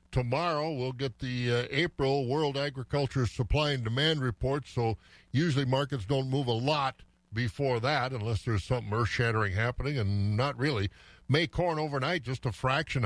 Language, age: English, 50-69